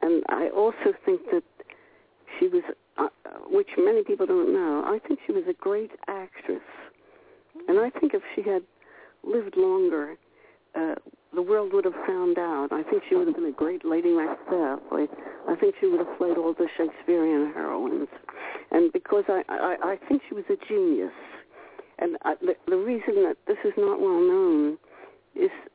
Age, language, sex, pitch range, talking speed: 60-79, English, female, 320-405 Hz, 180 wpm